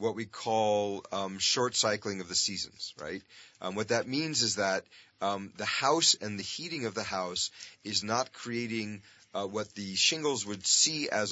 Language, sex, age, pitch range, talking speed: English, male, 30-49, 100-120 Hz, 185 wpm